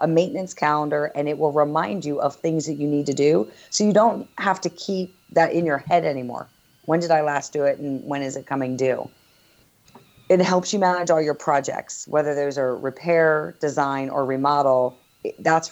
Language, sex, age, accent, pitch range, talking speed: English, female, 40-59, American, 140-165 Hz, 200 wpm